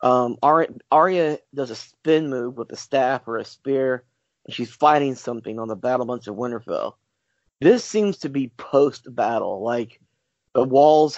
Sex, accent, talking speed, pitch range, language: male, American, 165 wpm, 120-145 Hz, English